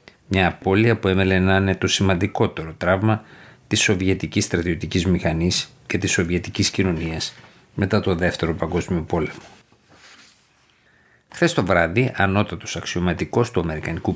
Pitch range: 90-110 Hz